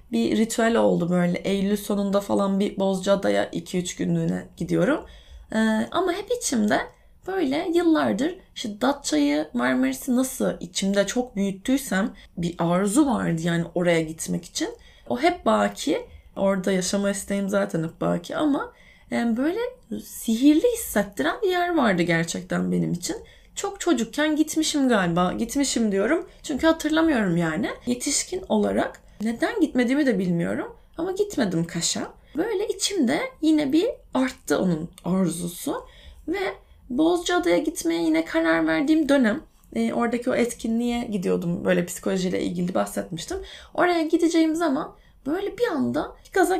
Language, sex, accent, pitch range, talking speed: Turkish, female, native, 190-315 Hz, 130 wpm